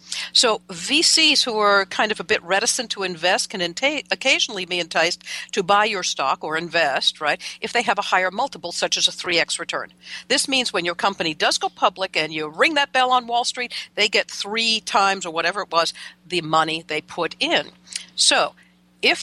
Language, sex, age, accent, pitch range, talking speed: English, female, 60-79, American, 170-230 Hz, 200 wpm